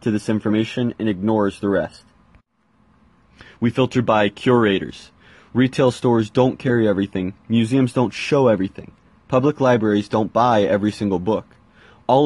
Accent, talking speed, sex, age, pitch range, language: American, 130 wpm, male, 20-39, 105-130 Hz, English